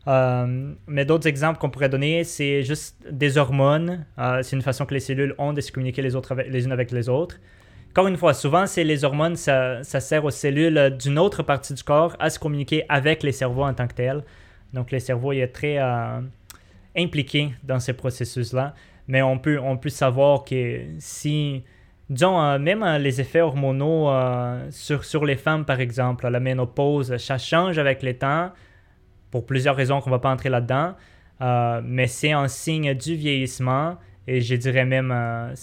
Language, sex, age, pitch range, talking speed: French, male, 20-39, 125-145 Hz, 195 wpm